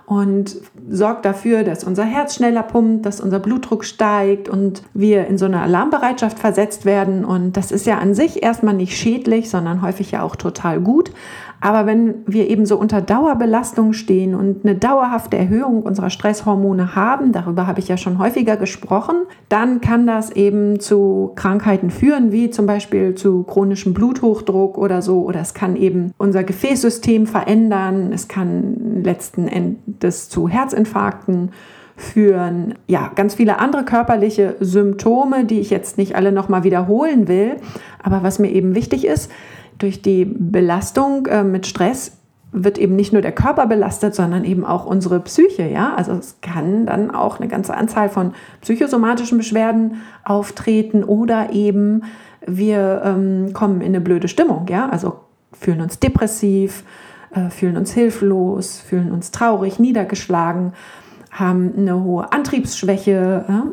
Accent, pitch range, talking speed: German, 190-220 Hz, 155 wpm